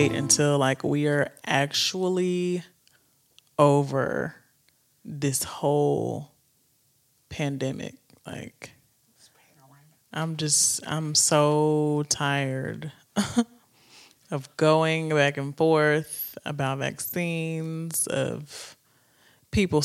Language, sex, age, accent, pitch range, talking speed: English, male, 20-39, American, 135-160 Hz, 75 wpm